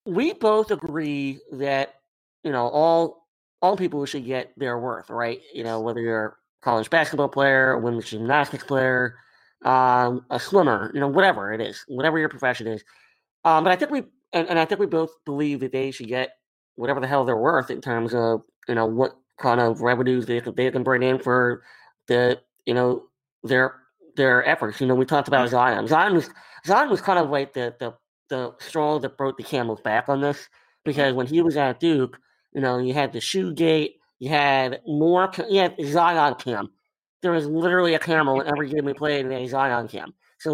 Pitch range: 125-160 Hz